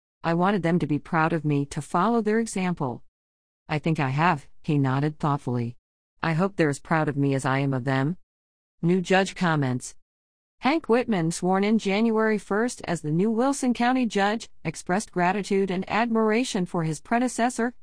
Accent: American